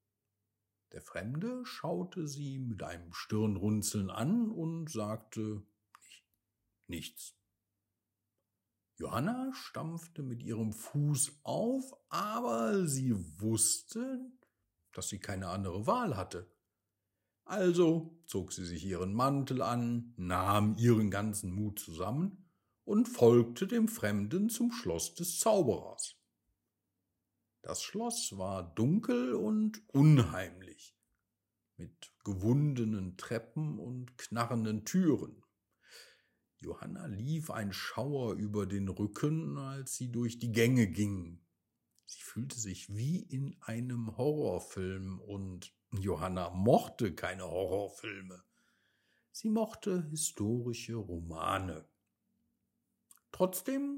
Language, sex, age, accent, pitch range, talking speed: German, male, 50-69, German, 100-155 Hz, 100 wpm